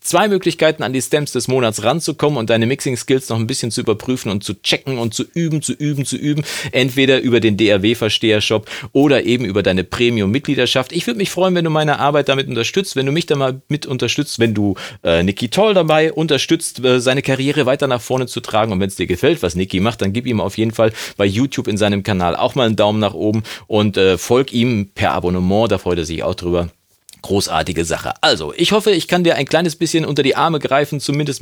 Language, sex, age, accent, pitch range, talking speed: German, male, 40-59, German, 100-140 Hz, 230 wpm